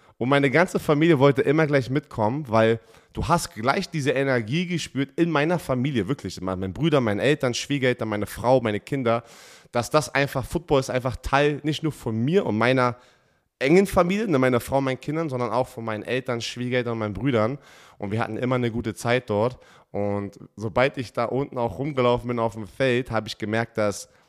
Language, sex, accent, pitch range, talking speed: German, male, German, 115-145 Hz, 195 wpm